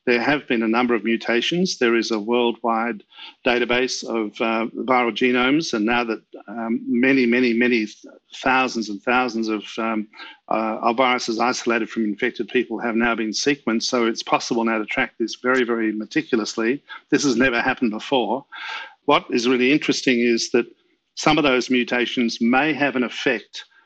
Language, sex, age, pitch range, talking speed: English, male, 50-69, 115-130 Hz, 170 wpm